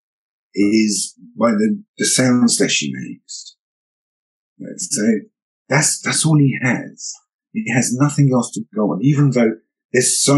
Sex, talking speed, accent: male, 150 wpm, British